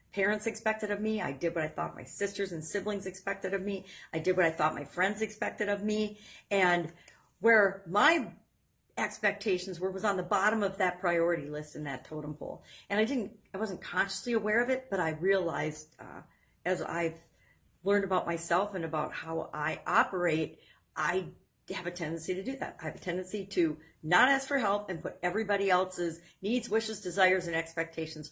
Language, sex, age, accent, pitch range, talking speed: English, female, 50-69, American, 165-215 Hz, 195 wpm